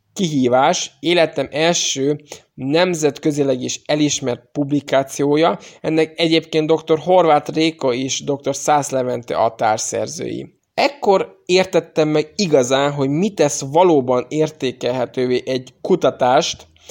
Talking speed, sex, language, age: 105 wpm, male, Hungarian, 20-39